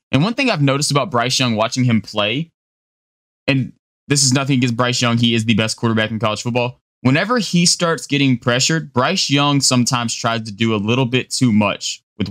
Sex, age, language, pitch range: male, 20-39, English, 110-145 Hz